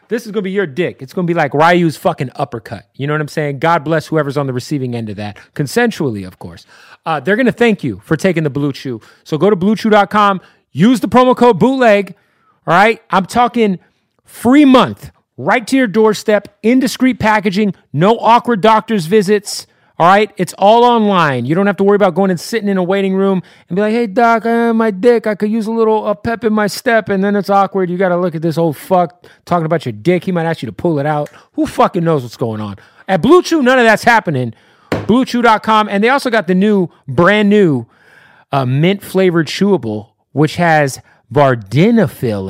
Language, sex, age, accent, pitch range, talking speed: English, male, 30-49, American, 145-215 Hz, 220 wpm